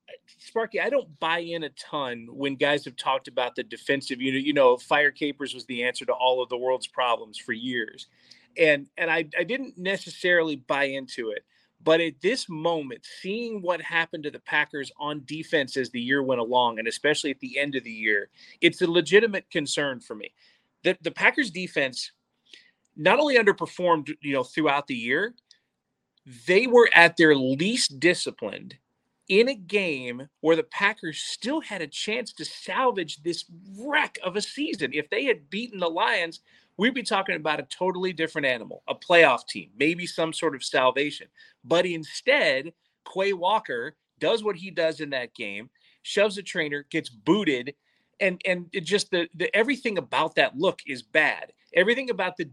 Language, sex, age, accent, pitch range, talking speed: English, male, 30-49, American, 145-200 Hz, 180 wpm